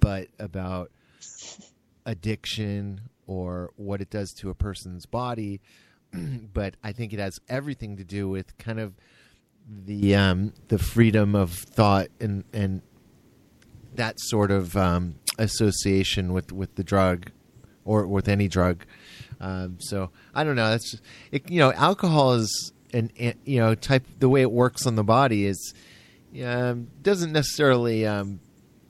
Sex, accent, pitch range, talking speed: male, American, 95-115 Hz, 150 wpm